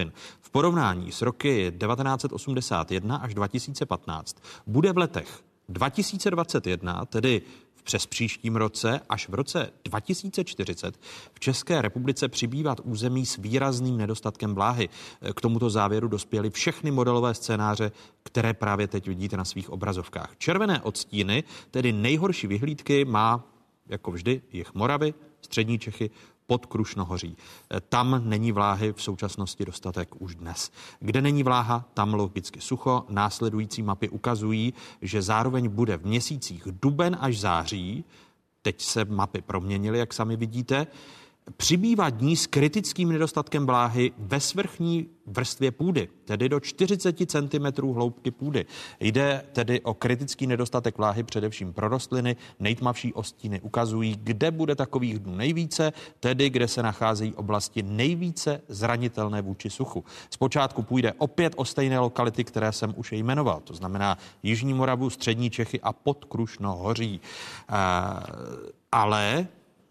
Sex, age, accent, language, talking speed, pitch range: male, 40-59, native, Czech, 130 wpm, 105-140 Hz